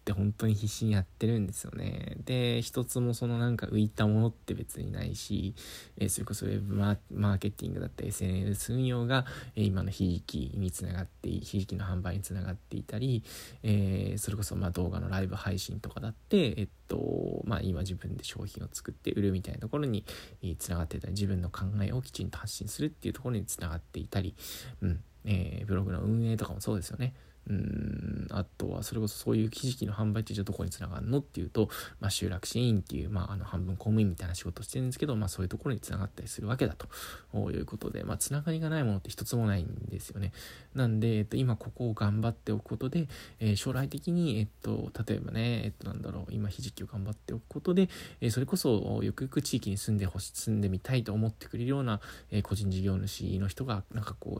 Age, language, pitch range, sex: 20-39, Japanese, 100-115 Hz, male